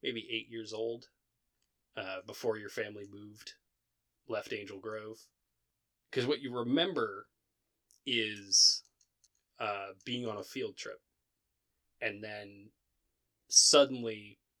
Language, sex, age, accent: English, male, 20-39, American